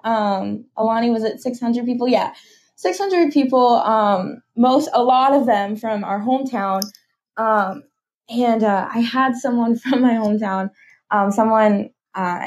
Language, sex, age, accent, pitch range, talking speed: English, female, 10-29, American, 185-230 Hz, 155 wpm